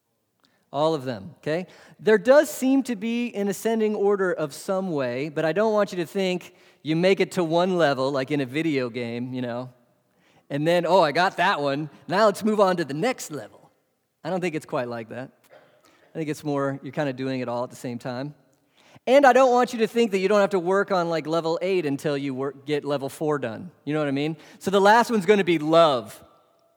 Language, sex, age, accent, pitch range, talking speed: English, male, 30-49, American, 145-195 Hz, 240 wpm